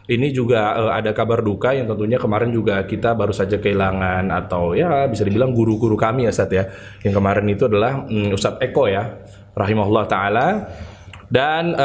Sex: male